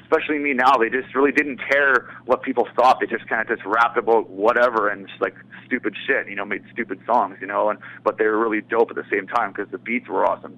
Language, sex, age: English, male, 30-49